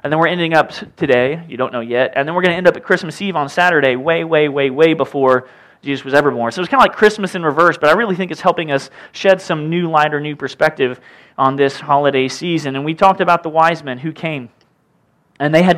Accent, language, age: American, English, 30-49